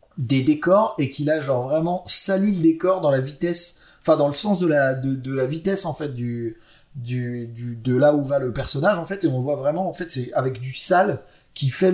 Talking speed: 210 wpm